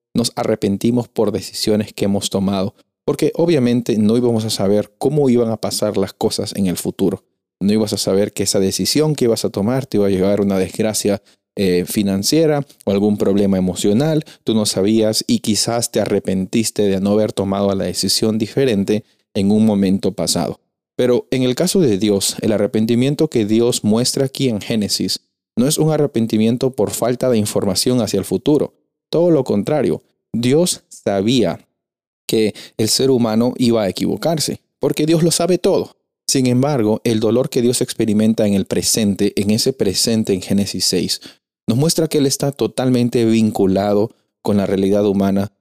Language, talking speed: Spanish, 175 wpm